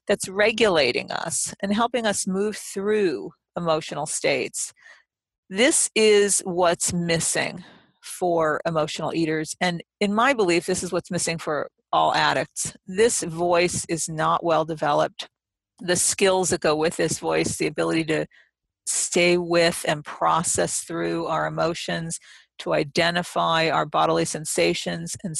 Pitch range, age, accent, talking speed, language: 160-200 Hz, 50-69, American, 135 wpm, English